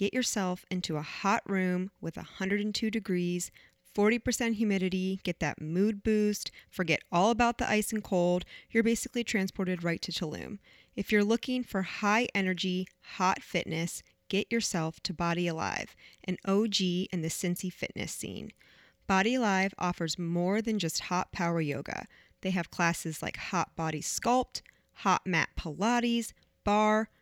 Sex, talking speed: female, 150 wpm